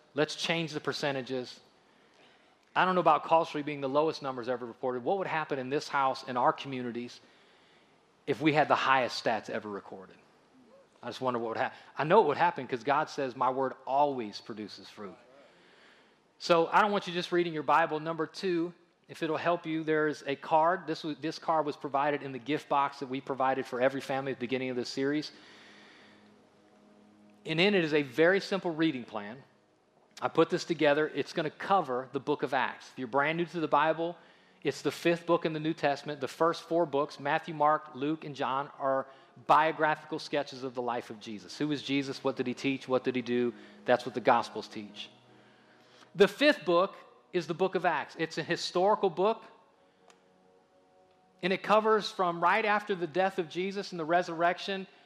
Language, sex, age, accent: English, male, 30-49, American